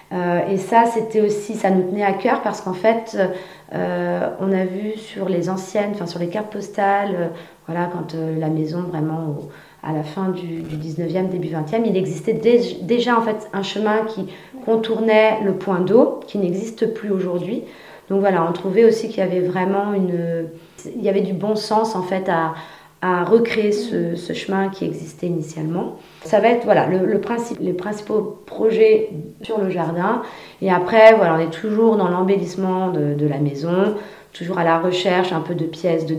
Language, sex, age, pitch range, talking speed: French, female, 30-49, 165-205 Hz, 195 wpm